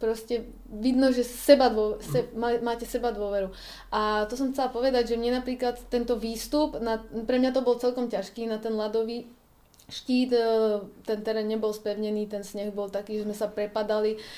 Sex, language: female, Czech